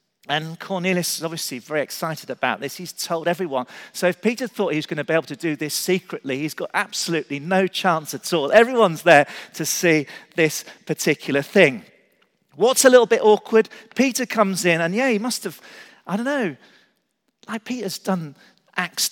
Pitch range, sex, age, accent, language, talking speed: 155-220 Hz, male, 40-59, British, English, 185 wpm